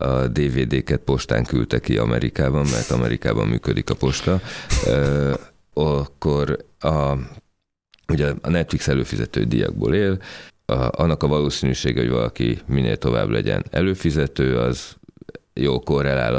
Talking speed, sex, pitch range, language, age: 115 wpm, male, 65-80 Hz, Hungarian, 30-49